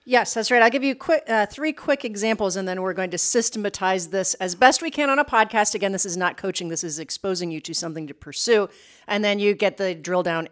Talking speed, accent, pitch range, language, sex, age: 250 wpm, American, 190-245 Hz, English, female, 40-59